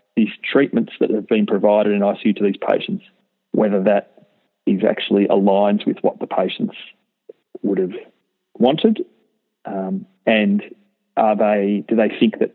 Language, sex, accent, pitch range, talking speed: English, male, Australian, 110-165 Hz, 150 wpm